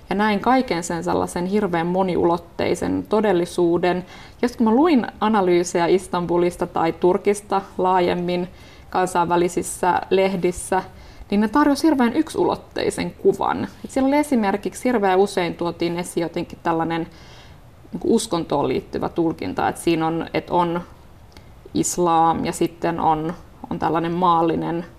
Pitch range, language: 170-225 Hz, Finnish